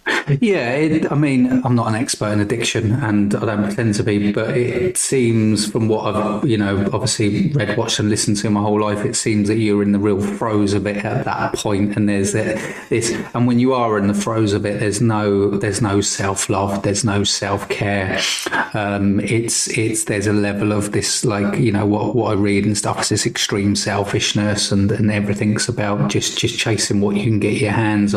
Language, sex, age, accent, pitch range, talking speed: English, male, 30-49, British, 105-120 Hz, 215 wpm